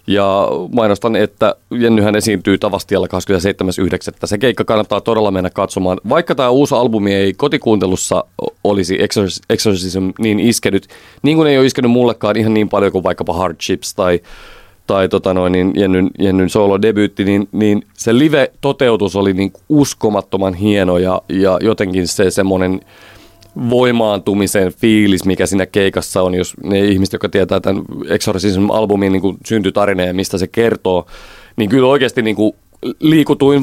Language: Finnish